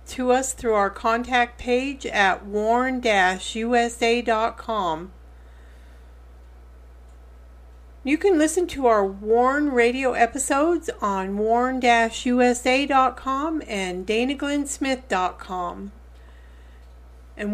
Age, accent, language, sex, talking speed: 50-69, American, English, female, 70 wpm